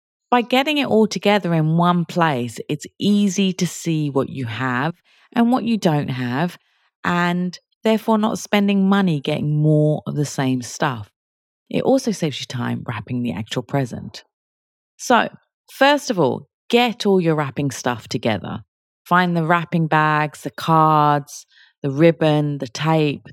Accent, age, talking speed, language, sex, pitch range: British, 30-49, 155 wpm, English, female, 130-185 Hz